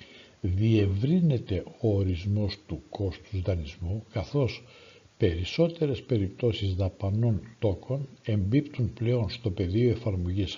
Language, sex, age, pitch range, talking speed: Greek, male, 60-79, 95-125 Hz, 90 wpm